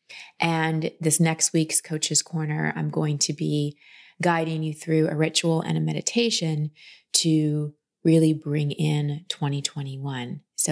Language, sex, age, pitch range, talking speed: English, female, 30-49, 150-165 Hz, 135 wpm